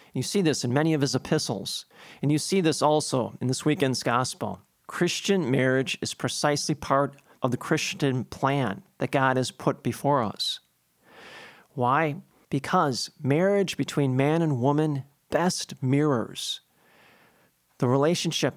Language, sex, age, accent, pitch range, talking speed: English, male, 40-59, American, 130-160 Hz, 140 wpm